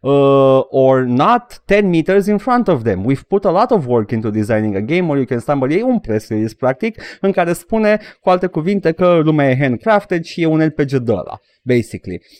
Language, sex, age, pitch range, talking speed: Romanian, male, 30-49, 110-150 Hz, 215 wpm